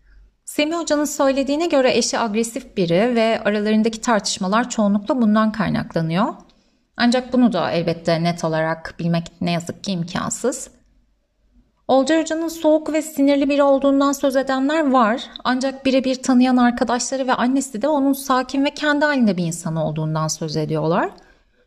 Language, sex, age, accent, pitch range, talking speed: Turkish, female, 30-49, native, 175-275 Hz, 140 wpm